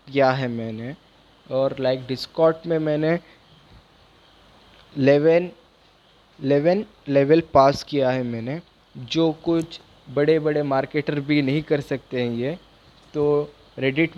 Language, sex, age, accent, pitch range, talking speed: Hindi, male, 20-39, native, 125-145 Hz, 120 wpm